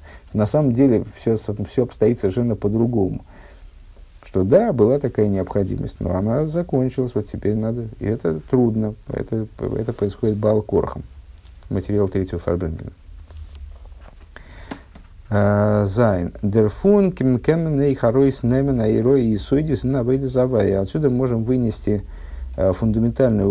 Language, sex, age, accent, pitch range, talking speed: Russian, male, 50-69, native, 95-125 Hz, 115 wpm